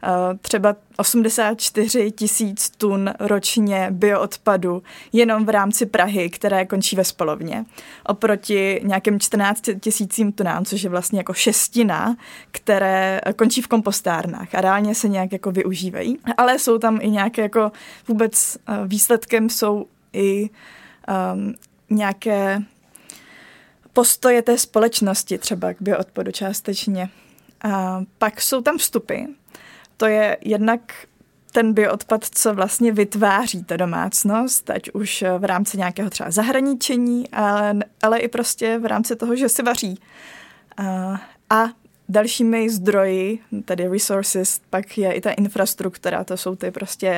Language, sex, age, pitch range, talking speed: Czech, female, 20-39, 195-225 Hz, 125 wpm